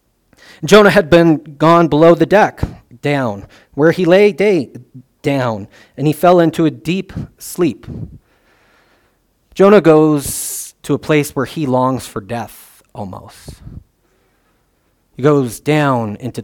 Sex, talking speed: male, 130 wpm